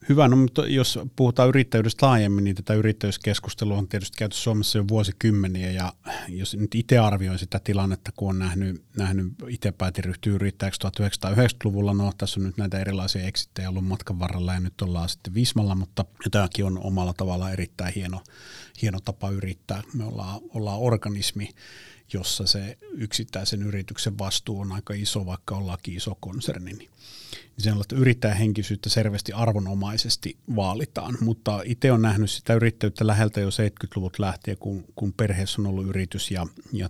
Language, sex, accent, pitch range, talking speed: Finnish, male, native, 95-110 Hz, 160 wpm